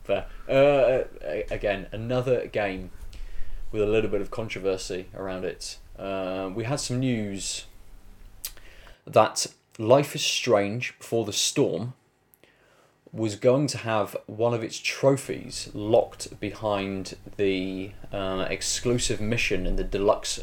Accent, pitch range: British, 95-110 Hz